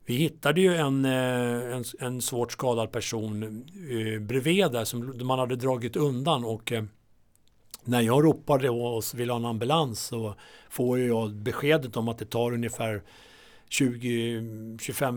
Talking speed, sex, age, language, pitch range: 145 wpm, male, 60-79, Swedish, 115-135 Hz